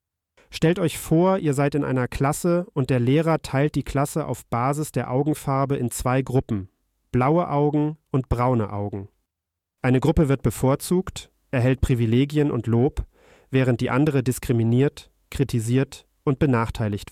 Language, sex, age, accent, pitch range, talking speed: German, male, 40-59, German, 115-145 Hz, 145 wpm